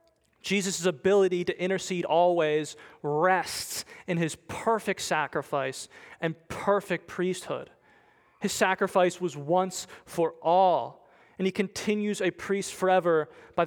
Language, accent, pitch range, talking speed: English, American, 165-195 Hz, 115 wpm